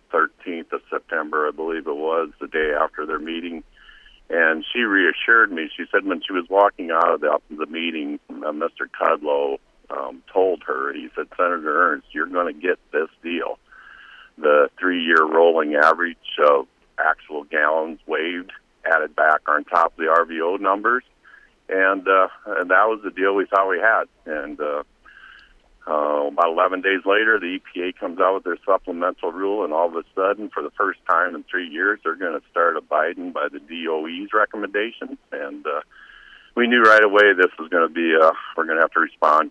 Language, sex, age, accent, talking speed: English, male, 50-69, American, 190 wpm